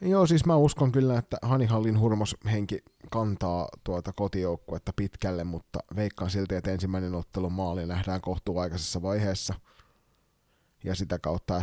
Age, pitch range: 30-49, 90-115 Hz